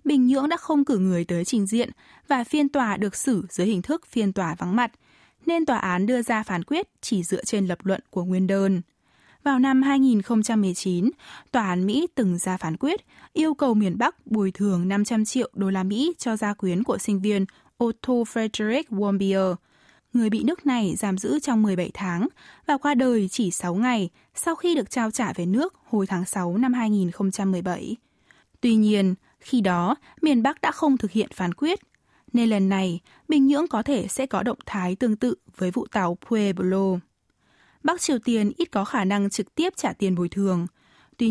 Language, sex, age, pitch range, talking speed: Vietnamese, female, 10-29, 190-260 Hz, 200 wpm